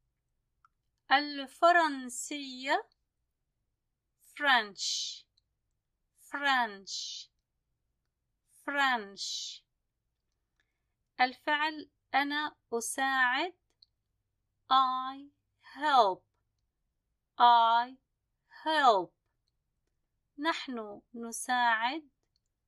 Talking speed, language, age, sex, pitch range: 35 wpm, Arabic, 30-49, female, 225-295 Hz